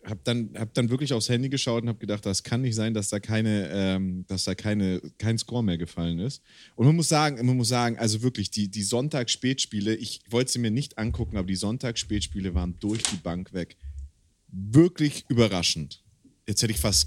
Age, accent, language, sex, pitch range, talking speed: 30-49, German, German, male, 105-135 Hz, 205 wpm